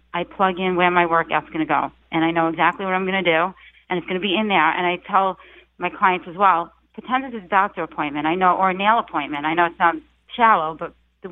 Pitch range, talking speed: 170-205 Hz, 255 wpm